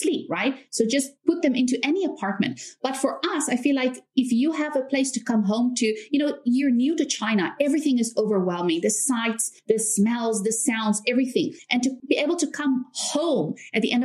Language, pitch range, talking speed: English, 210-265 Hz, 215 wpm